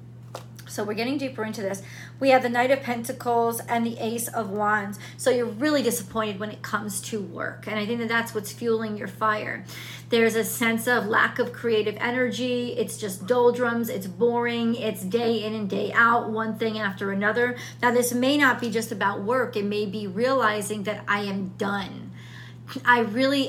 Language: English